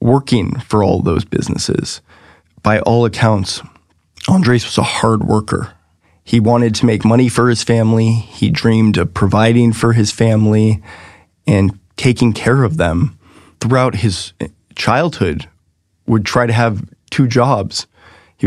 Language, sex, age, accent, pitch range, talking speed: English, male, 20-39, American, 100-120 Hz, 140 wpm